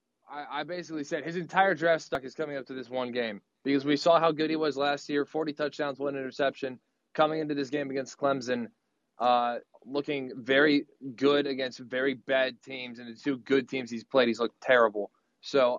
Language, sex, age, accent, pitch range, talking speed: English, male, 20-39, American, 135-160 Hz, 200 wpm